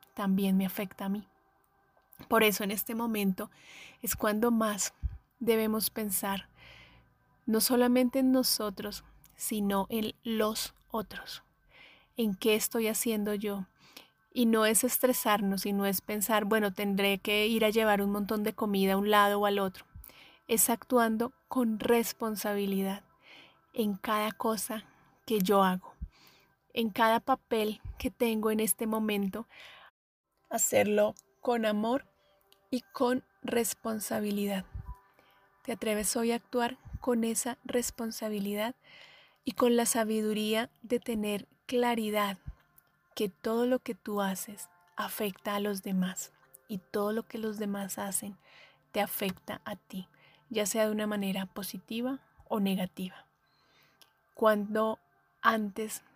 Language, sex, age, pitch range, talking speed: Spanish, female, 30-49, 200-230 Hz, 130 wpm